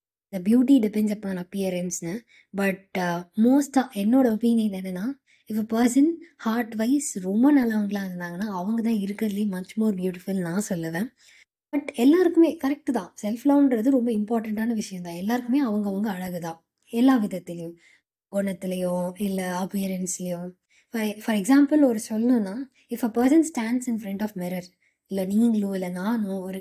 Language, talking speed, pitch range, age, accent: Tamil, 140 wpm, 190-245 Hz, 20-39, native